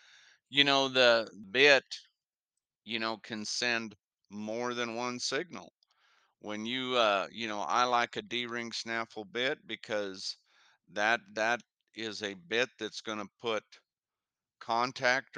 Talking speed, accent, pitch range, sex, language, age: 130 wpm, American, 110-125 Hz, male, English, 50-69